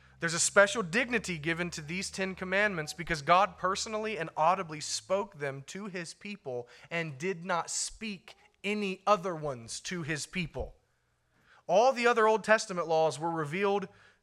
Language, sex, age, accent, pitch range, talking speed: English, male, 30-49, American, 135-185 Hz, 155 wpm